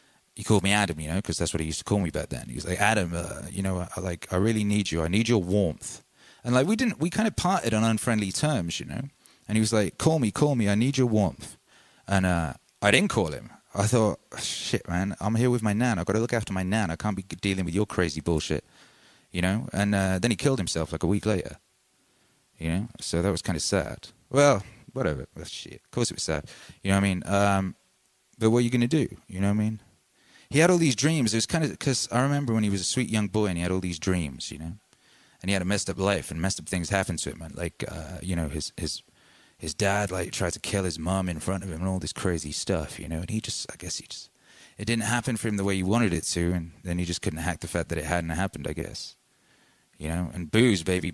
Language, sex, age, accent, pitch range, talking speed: English, male, 30-49, British, 85-110 Hz, 280 wpm